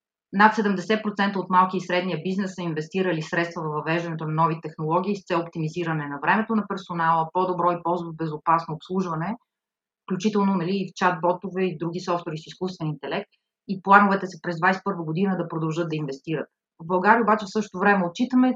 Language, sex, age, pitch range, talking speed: Bulgarian, female, 30-49, 165-195 Hz, 185 wpm